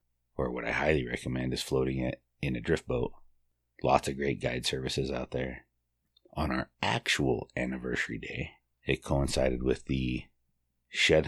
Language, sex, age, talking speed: English, male, 30-49, 155 wpm